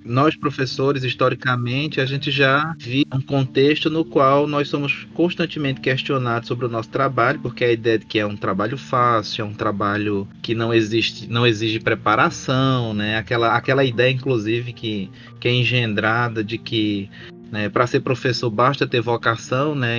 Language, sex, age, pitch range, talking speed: Portuguese, male, 20-39, 110-135 Hz, 170 wpm